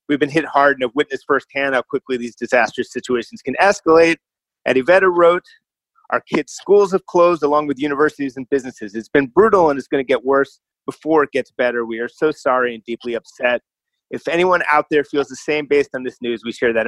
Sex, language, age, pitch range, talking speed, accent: male, English, 30-49, 130-155 Hz, 220 wpm, American